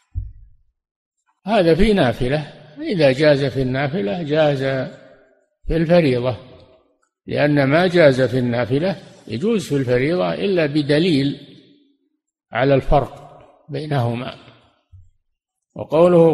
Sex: male